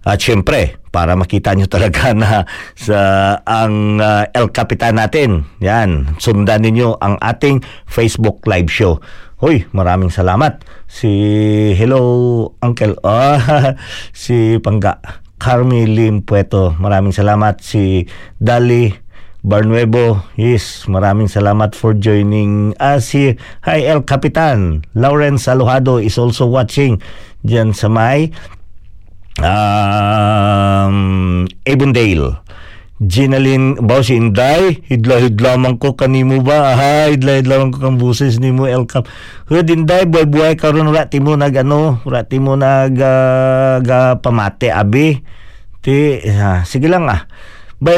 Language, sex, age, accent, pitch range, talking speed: Filipino, male, 50-69, native, 100-135 Hz, 125 wpm